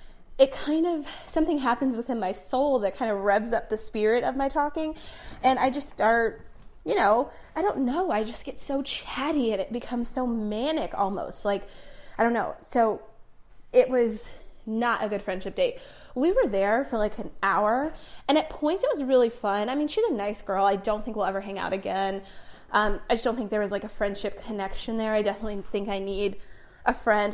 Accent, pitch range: American, 205-270 Hz